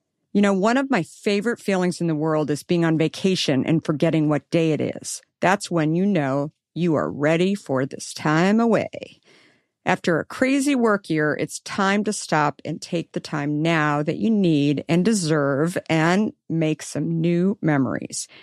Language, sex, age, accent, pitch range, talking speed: English, female, 50-69, American, 155-195 Hz, 180 wpm